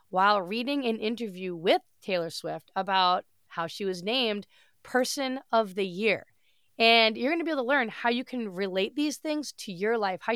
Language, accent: English, American